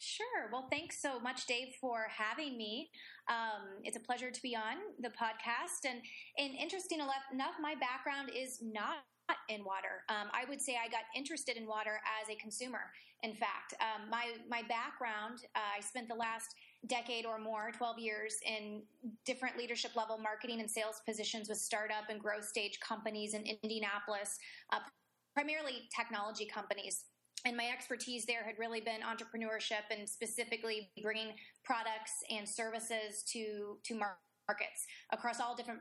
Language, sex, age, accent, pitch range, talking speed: English, female, 20-39, American, 215-240 Hz, 160 wpm